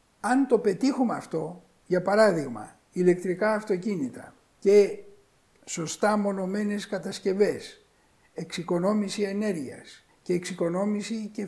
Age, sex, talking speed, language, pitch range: 60-79, male, 90 wpm, Greek, 185-210 Hz